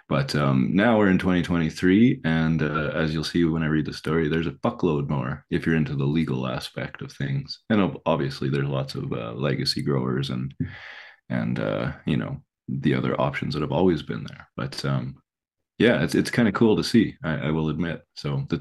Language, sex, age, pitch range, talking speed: English, male, 20-39, 75-85 Hz, 210 wpm